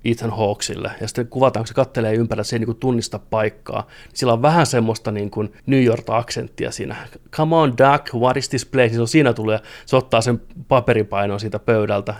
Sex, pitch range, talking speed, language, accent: male, 105-125 Hz, 215 wpm, Finnish, native